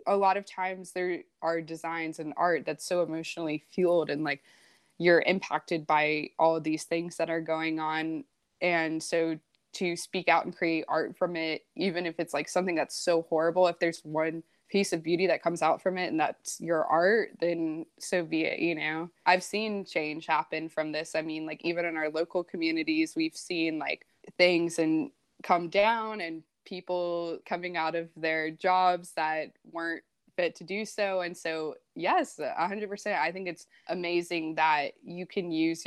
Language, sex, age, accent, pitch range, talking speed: English, female, 20-39, American, 160-180 Hz, 185 wpm